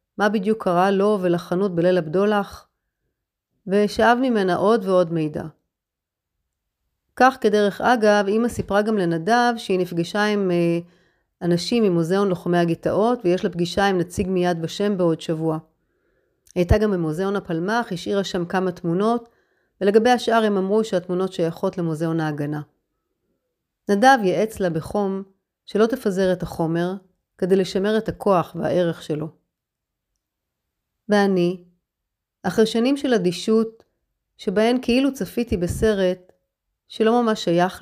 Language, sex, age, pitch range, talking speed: Hebrew, female, 30-49, 170-210 Hz, 125 wpm